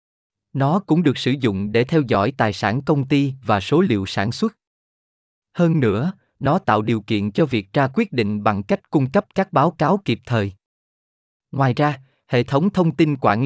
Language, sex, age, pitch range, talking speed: Vietnamese, male, 20-39, 110-155 Hz, 195 wpm